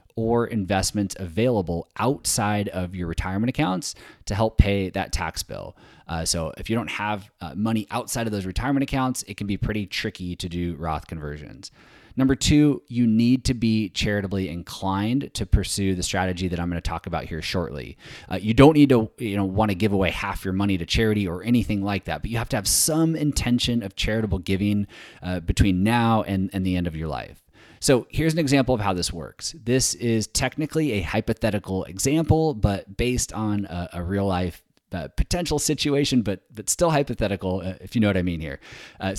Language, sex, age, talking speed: English, male, 20-39, 205 wpm